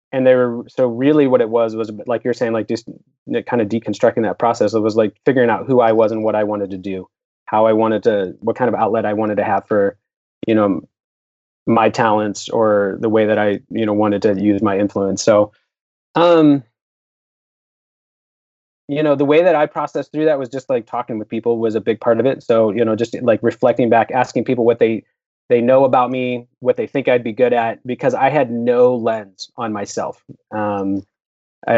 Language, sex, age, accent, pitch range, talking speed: English, male, 20-39, American, 105-130 Hz, 220 wpm